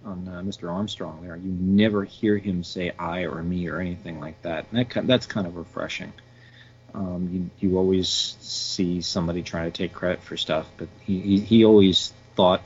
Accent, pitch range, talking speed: American, 90-110 Hz, 205 wpm